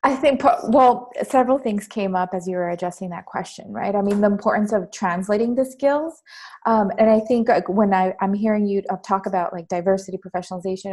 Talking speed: 205 wpm